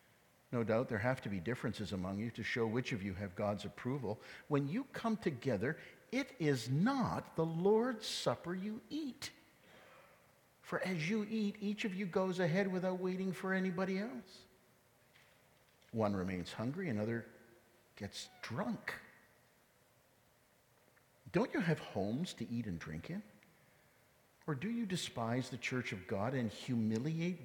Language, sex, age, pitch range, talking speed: English, male, 50-69, 105-170 Hz, 150 wpm